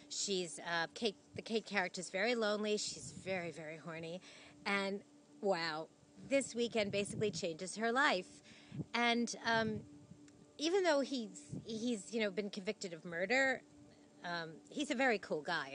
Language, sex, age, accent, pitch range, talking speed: English, female, 40-59, American, 180-245 Hz, 145 wpm